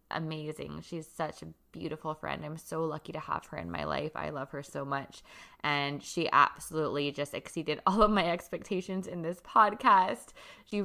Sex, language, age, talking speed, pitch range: female, English, 20-39, 185 wpm, 160-195 Hz